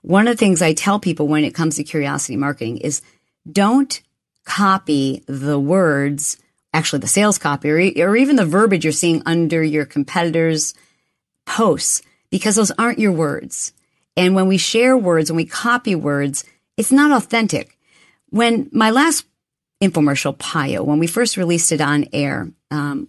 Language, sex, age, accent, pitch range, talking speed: English, female, 40-59, American, 150-195 Hz, 165 wpm